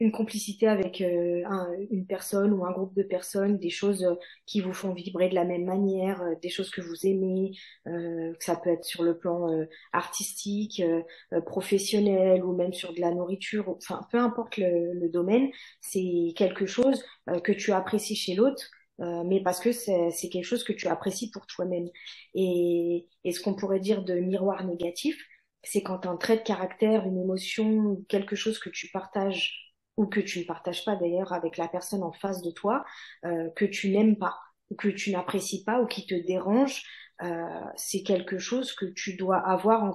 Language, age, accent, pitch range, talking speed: French, 30-49, French, 175-210 Hz, 205 wpm